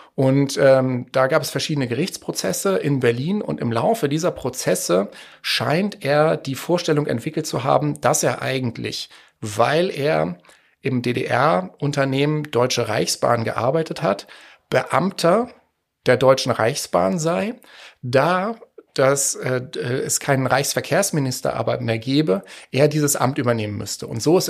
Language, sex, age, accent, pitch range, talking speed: German, male, 40-59, German, 125-155 Hz, 130 wpm